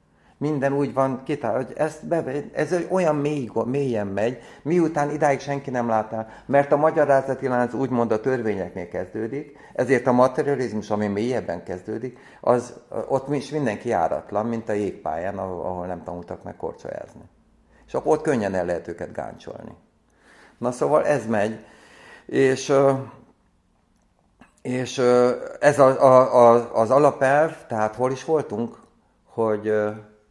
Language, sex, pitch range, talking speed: Hungarian, male, 105-135 Hz, 135 wpm